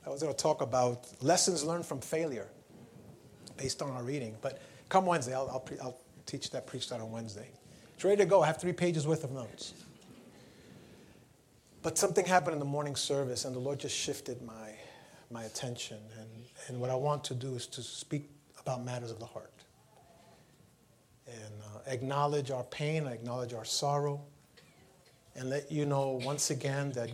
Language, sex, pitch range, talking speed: English, male, 125-150 Hz, 180 wpm